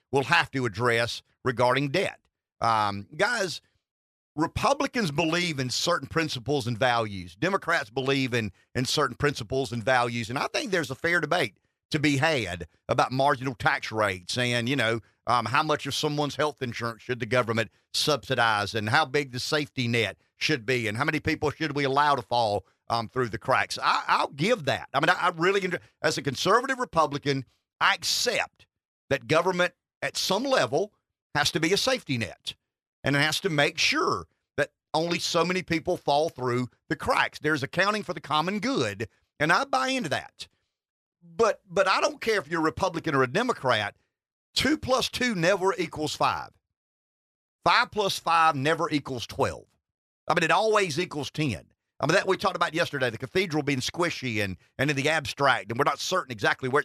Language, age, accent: English, 50-69, American